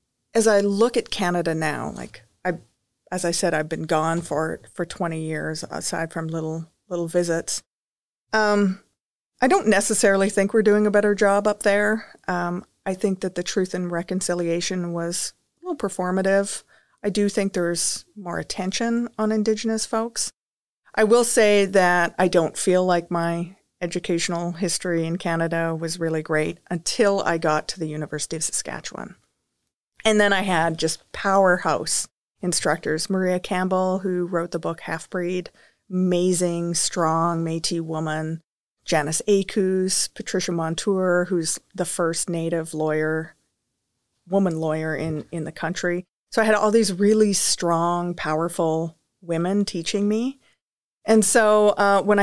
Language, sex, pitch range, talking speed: English, female, 165-200 Hz, 145 wpm